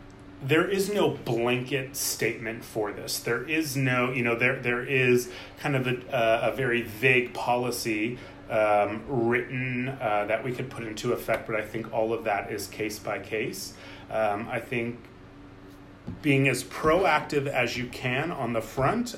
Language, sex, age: English, male, 30-49